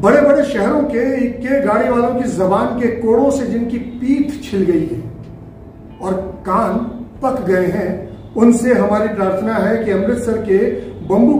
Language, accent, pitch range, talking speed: Hindi, native, 205-250 Hz, 160 wpm